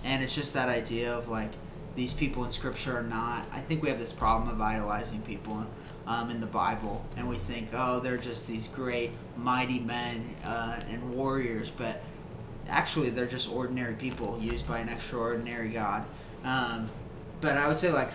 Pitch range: 115-140 Hz